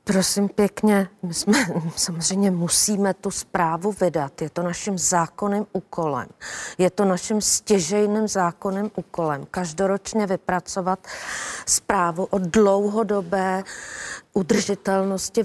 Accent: native